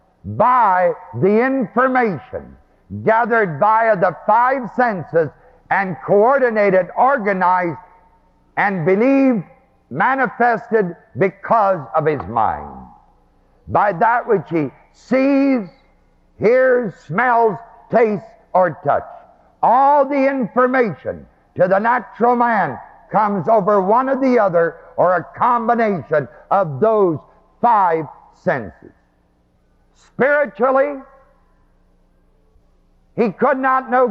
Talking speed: 95 wpm